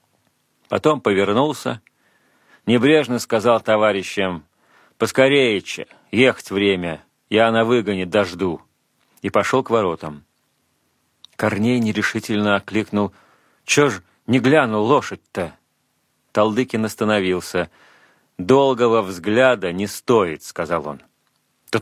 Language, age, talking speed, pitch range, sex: Russian, 40-59, 90 wpm, 100-115 Hz, male